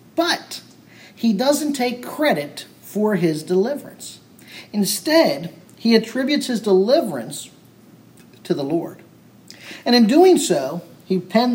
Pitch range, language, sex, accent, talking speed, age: 170-220 Hz, English, male, American, 115 wpm, 50-69